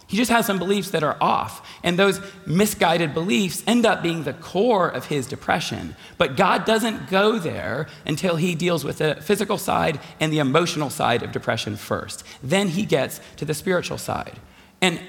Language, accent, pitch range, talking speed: English, American, 135-190 Hz, 185 wpm